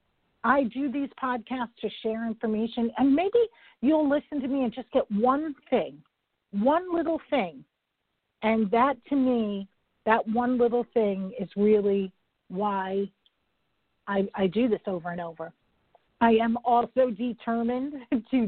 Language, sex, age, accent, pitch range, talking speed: English, female, 50-69, American, 195-235 Hz, 145 wpm